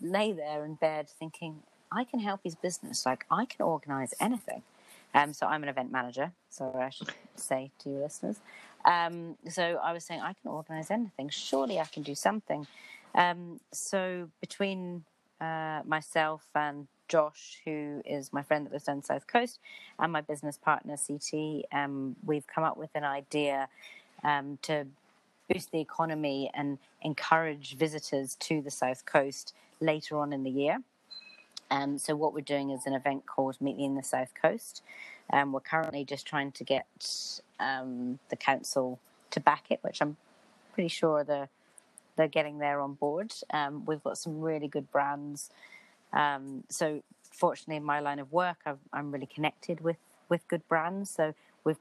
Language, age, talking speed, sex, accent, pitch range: English, 30-49, 175 wpm, female, British, 140-165 Hz